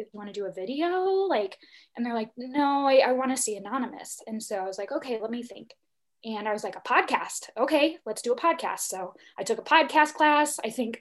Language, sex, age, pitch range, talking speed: English, female, 10-29, 195-260 Hz, 240 wpm